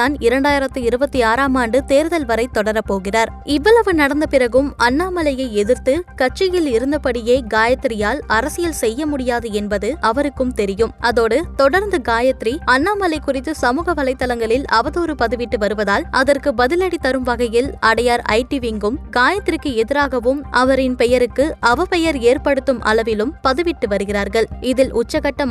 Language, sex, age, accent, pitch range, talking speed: Tamil, female, 20-39, native, 230-295 Hz, 115 wpm